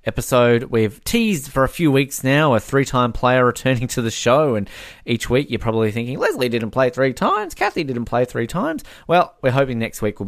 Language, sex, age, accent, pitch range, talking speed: English, male, 20-39, Australian, 95-130 Hz, 215 wpm